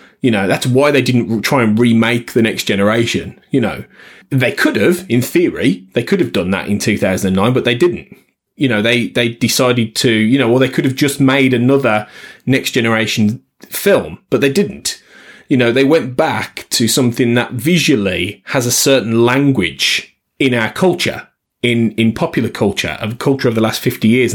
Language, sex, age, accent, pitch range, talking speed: English, male, 30-49, British, 110-140 Hz, 190 wpm